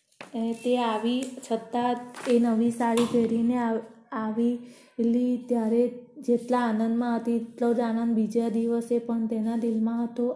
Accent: native